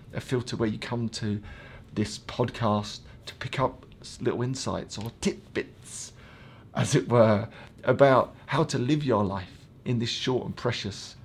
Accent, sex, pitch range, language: British, male, 110-135 Hz, English